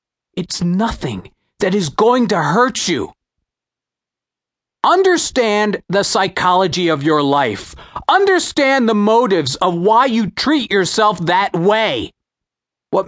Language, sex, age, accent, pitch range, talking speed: English, male, 40-59, American, 175-235 Hz, 115 wpm